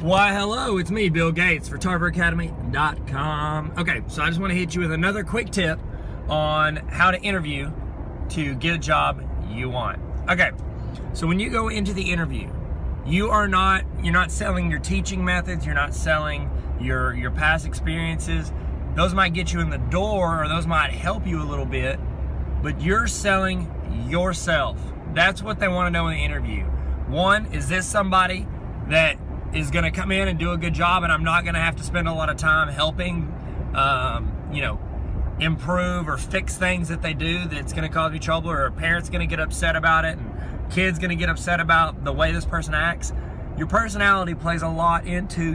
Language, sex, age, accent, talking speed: English, male, 30-49, American, 190 wpm